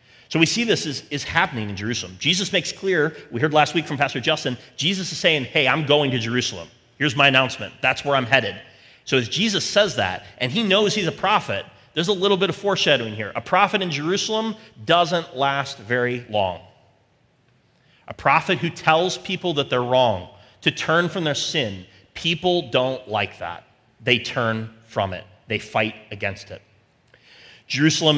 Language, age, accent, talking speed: English, 30-49, American, 185 wpm